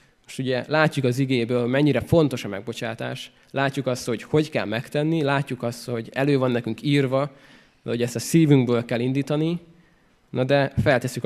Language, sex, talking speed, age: Hungarian, male, 165 wpm, 20-39